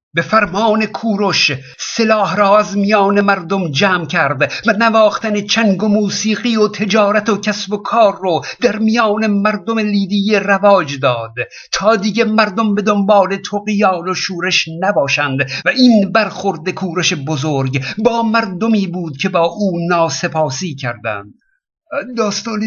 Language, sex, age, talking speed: Persian, male, 50-69, 135 wpm